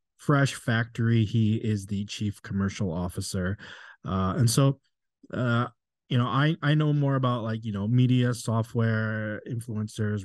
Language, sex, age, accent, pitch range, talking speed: English, male, 20-39, American, 100-120 Hz, 145 wpm